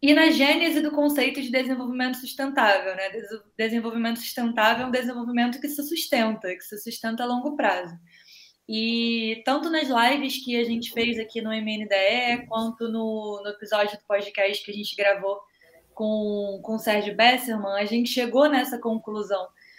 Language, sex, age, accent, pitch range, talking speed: Portuguese, female, 20-39, Brazilian, 210-250 Hz, 160 wpm